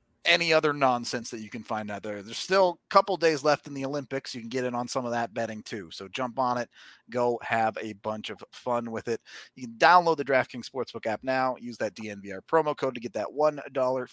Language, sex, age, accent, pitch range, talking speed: English, male, 30-49, American, 110-160 Hz, 240 wpm